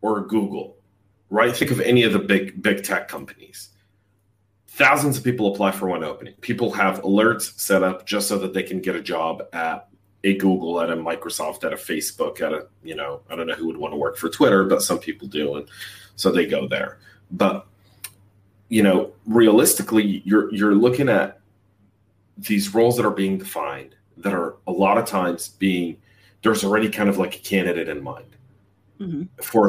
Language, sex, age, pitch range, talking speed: English, male, 40-59, 95-105 Hz, 190 wpm